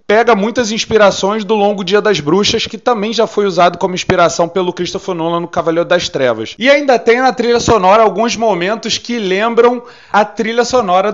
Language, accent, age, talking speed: Portuguese, Brazilian, 30-49, 190 wpm